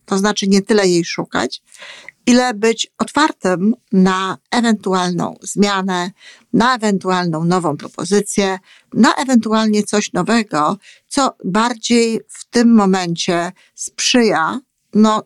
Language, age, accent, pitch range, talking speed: Polish, 50-69, native, 180-230 Hz, 105 wpm